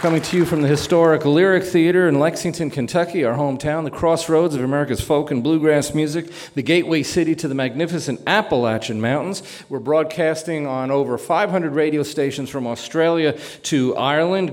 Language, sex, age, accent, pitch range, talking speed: English, male, 40-59, American, 145-180 Hz, 165 wpm